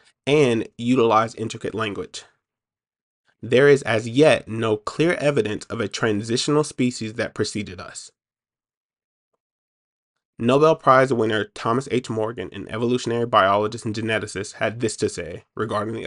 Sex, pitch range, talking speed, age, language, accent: male, 110-130 Hz, 130 wpm, 20-39, English, American